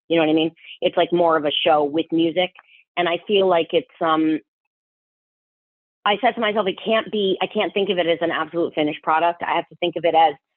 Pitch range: 165-195 Hz